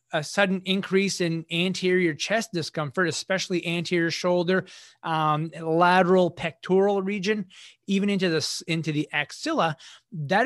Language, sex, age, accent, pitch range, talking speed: English, male, 30-49, American, 160-200 Hz, 120 wpm